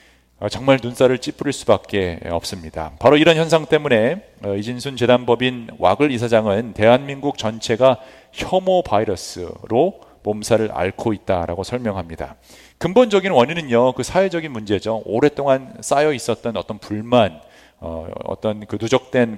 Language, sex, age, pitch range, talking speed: English, male, 40-59, 100-140 Hz, 115 wpm